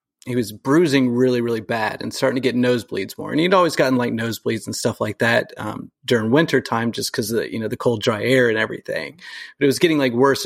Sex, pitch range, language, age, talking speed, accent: male, 115-135 Hz, English, 30-49, 240 wpm, American